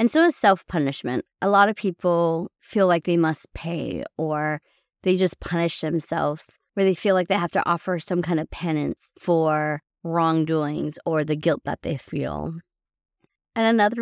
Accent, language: American, English